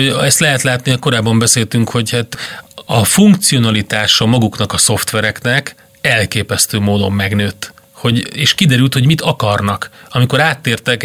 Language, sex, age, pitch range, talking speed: Hungarian, male, 30-49, 110-130 Hz, 125 wpm